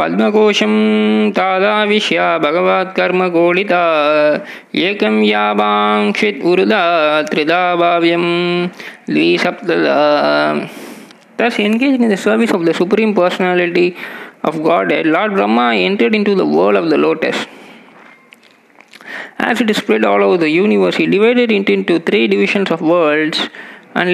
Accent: native